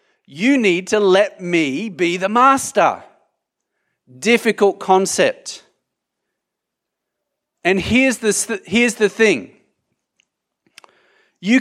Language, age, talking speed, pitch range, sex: English, 40-59, 90 wpm, 140-205 Hz, male